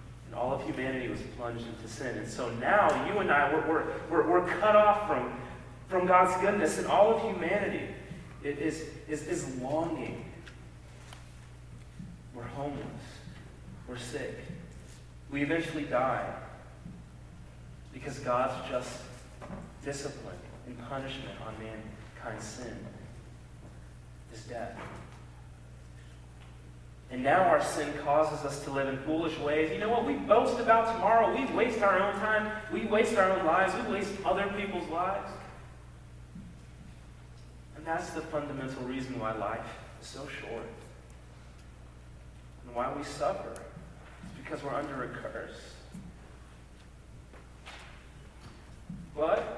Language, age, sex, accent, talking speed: English, 30-49, male, American, 125 wpm